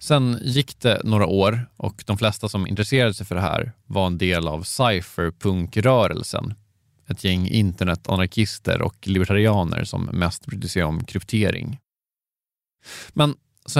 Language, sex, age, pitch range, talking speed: Swedish, male, 20-39, 95-120 Hz, 140 wpm